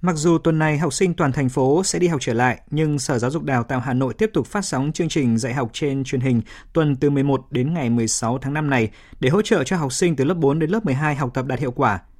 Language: Vietnamese